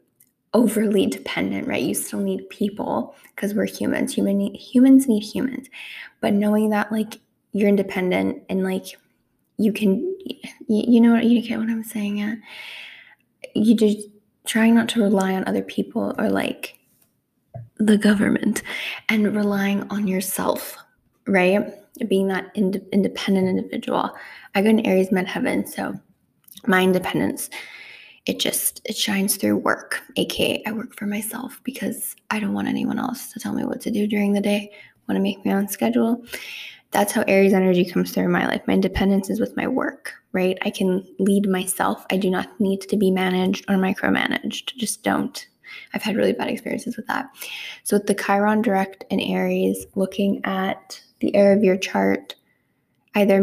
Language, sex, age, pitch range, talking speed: English, female, 10-29, 195-230 Hz, 165 wpm